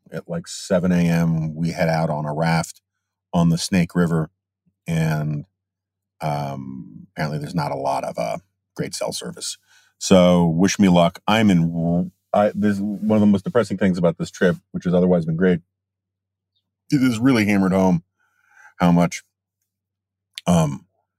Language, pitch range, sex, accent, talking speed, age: English, 85-95 Hz, male, American, 165 wpm, 40-59